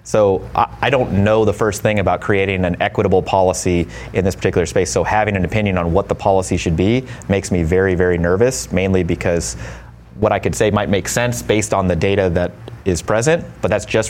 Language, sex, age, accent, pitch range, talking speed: English, male, 30-49, American, 85-100 Hz, 215 wpm